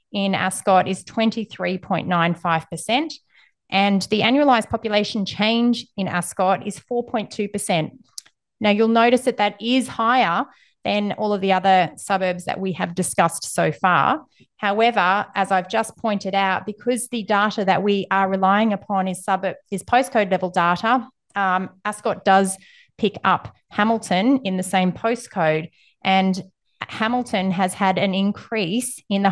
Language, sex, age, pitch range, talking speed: English, female, 30-49, 180-215 Hz, 145 wpm